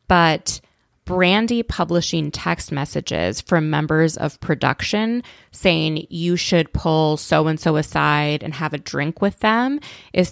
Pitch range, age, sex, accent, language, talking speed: 150-175 Hz, 20-39, female, American, English, 140 wpm